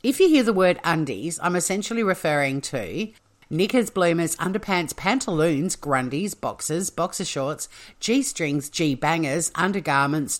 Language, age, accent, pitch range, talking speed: English, 50-69, Australian, 145-195 Hz, 120 wpm